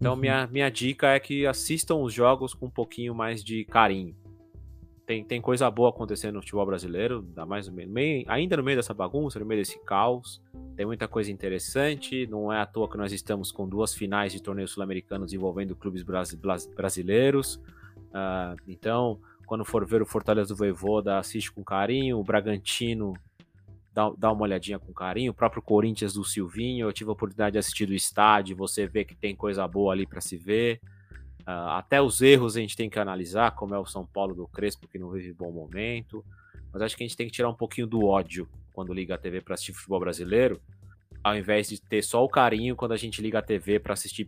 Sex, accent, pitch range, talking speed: male, Brazilian, 95-110 Hz, 210 wpm